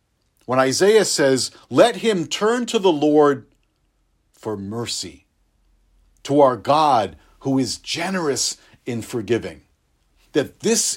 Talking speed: 115 wpm